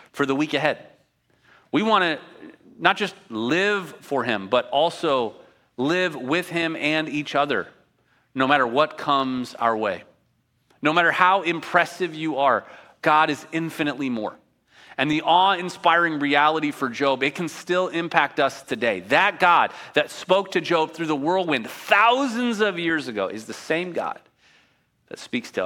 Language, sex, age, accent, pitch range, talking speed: English, male, 30-49, American, 135-185 Hz, 160 wpm